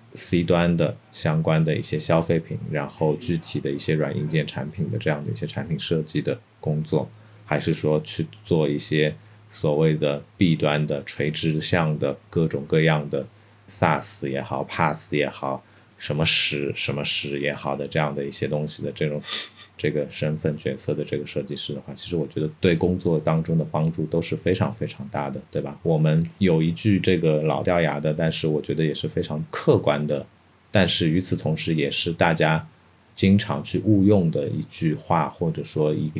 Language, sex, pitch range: Chinese, male, 75-95 Hz